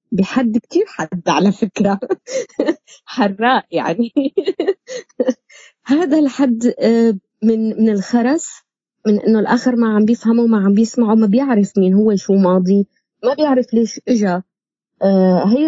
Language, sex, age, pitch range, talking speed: Arabic, female, 20-39, 190-245 Hz, 125 wpm